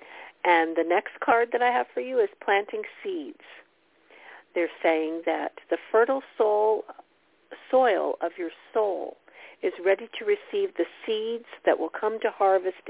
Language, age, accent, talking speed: English, 50-69, American, 150 wpm